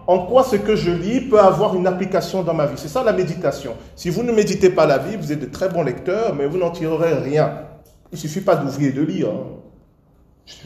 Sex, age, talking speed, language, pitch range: male, 40-59, 250 wpm, French, 125-180 Hz